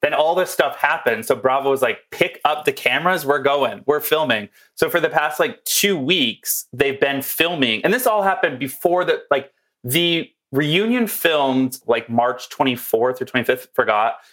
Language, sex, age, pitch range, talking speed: English, male, 30-49, 125-160 Hz, 175 wpm